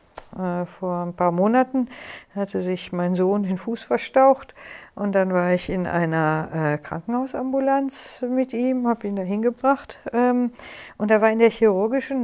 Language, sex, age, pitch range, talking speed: German, female, 60-79, 200-255 Hz, 145 wpm